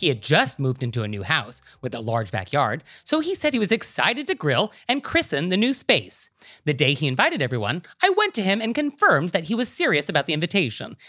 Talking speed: 235 wpm